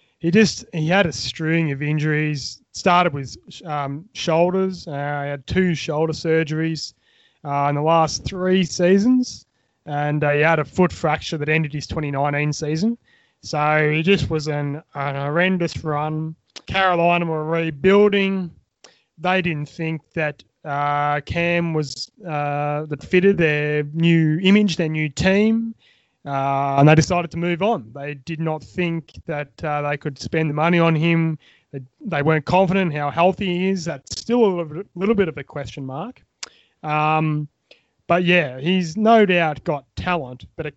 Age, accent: 20-39, Australian